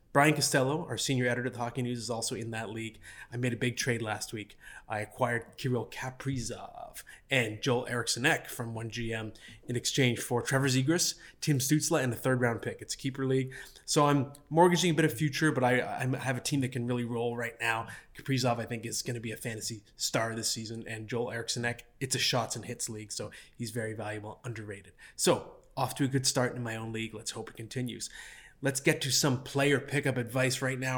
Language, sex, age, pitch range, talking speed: English, male, 20-39, 115-140 Hz, 220 wpm